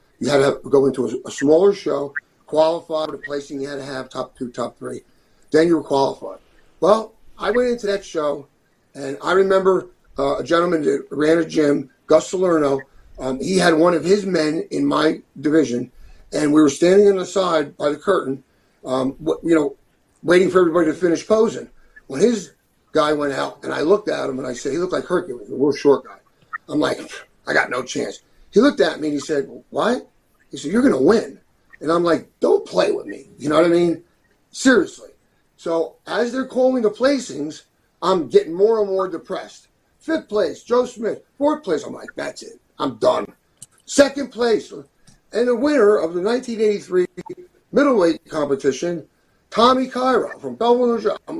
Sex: male